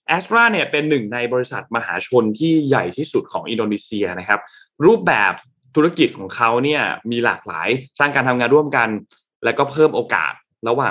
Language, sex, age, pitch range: Thai, male, 20-39, 110-140 Hz